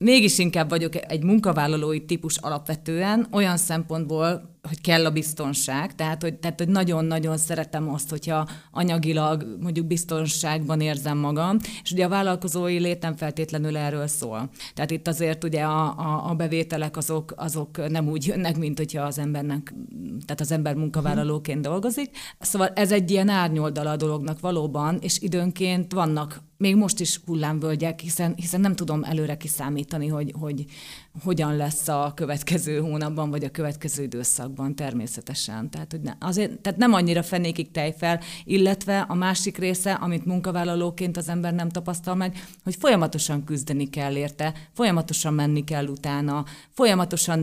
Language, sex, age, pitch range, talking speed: Hungarian, female, 30-49, 155-175 Hz, 150 wpm